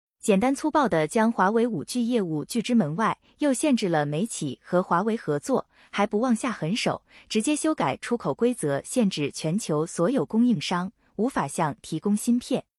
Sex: female